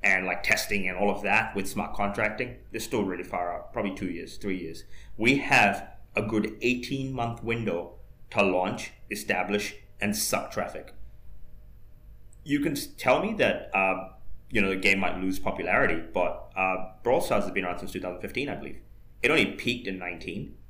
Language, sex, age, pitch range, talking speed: English, male, 30-49, 95-110 Hz, 180 wpm